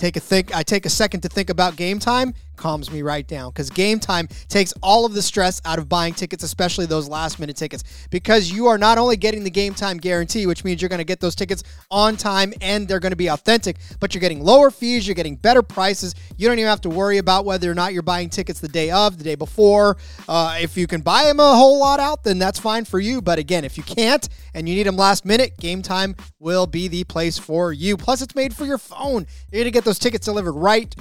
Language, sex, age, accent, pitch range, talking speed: English, male, 20-39, American, 170-205 Hz, 255 wpm